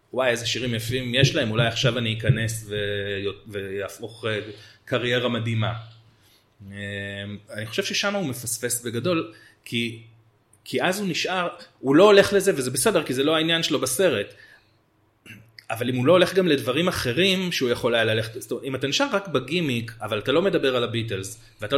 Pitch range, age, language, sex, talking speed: 115-150 Hz, 30-49, Hebrew, male, 170 wpm